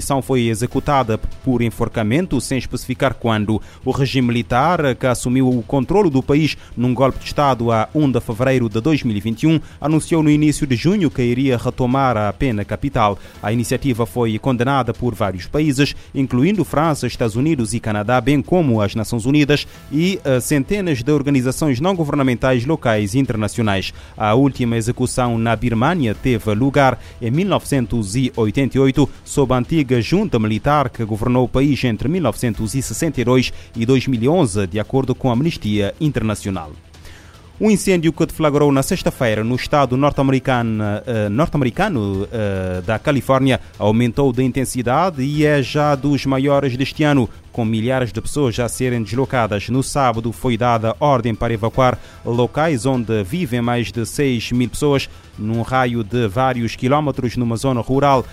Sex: male